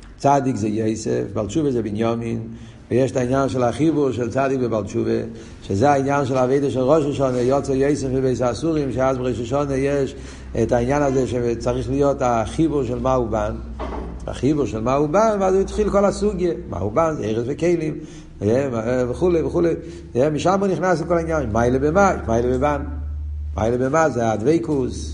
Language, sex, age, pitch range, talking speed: Hebrew, male, 60-79, 110-155 Hz, 165 wpm